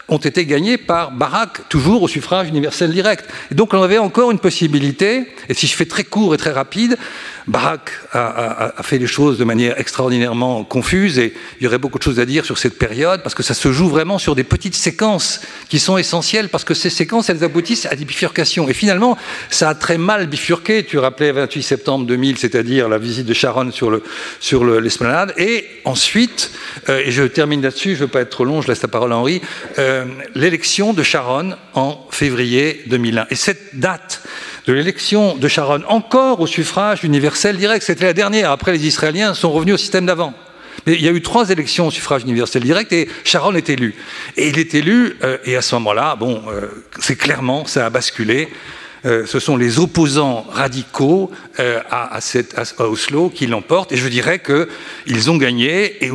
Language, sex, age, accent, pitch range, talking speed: French, male, 50-69, French, 130-185 Hz, 205 wpm